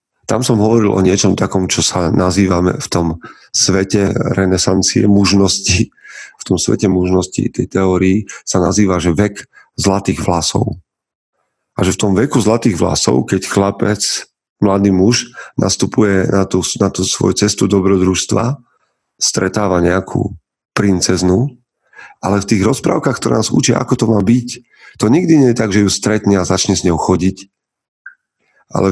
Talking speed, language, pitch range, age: 150 wpm, Slovak, 95-115 Hz, 40-59